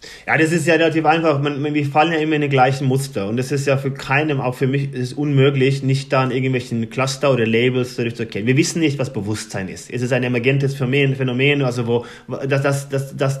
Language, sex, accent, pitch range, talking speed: German, male, German, 125-150 Hz, 240 wpm